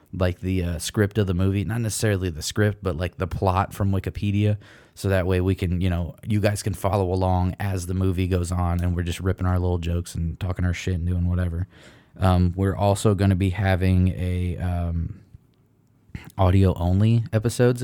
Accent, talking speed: American, 200 wpm